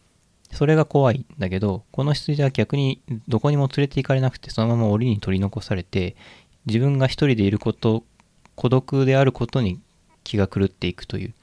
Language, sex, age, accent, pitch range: Japanese, male, 20-39, native, 95-130 Hz